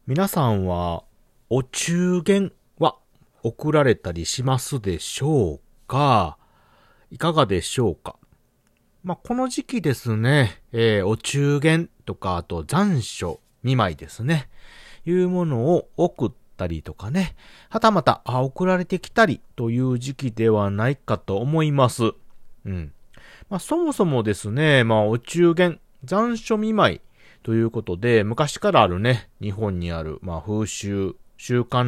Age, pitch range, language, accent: 40-59, 100-170 Hz, Japanese, native